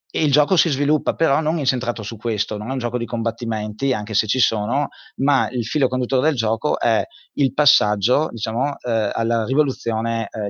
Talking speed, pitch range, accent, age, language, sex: 195 wpm, 105-130 Hz, native, 30-49, Italian, male